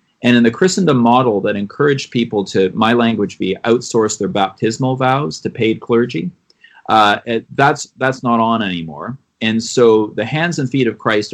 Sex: male